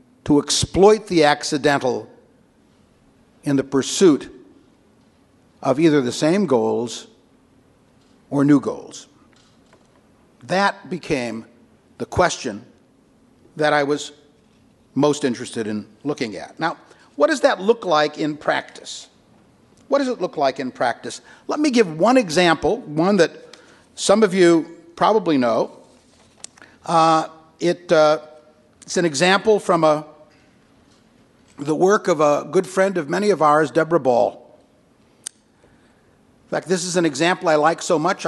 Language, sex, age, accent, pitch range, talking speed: English, male, 60-79, American, 145-195 Hz, 130 wpm